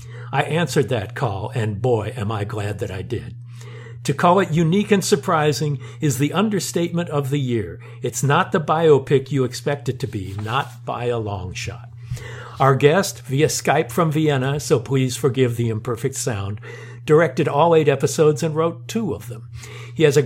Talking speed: 185 wpm